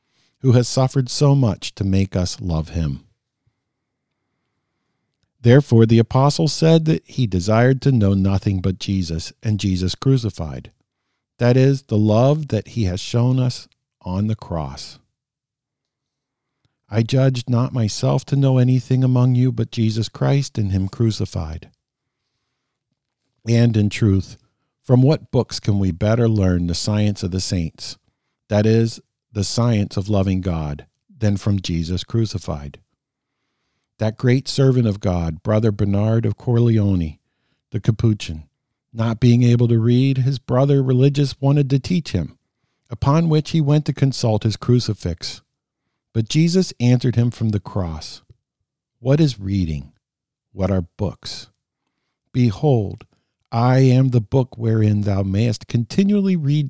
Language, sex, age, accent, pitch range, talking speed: English, male, 50-69, American, 100-130 Hz, 140 wpm